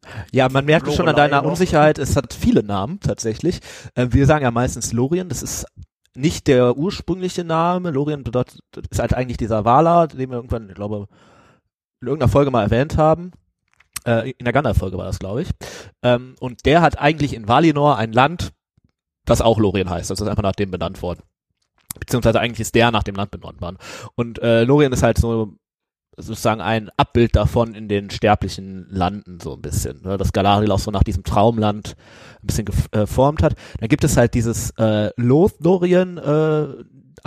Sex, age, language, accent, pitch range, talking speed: male, 30-49, German, German, 105-135 Hz, 180 wpm